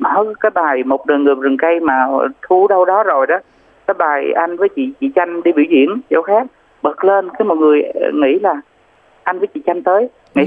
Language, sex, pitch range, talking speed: Vietnamese, male, 155-210 Hz, 225 wpm